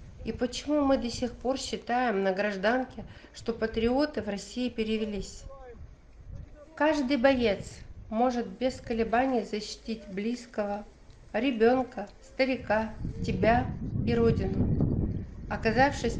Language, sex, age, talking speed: Russian, female, 40-59, 100 wpm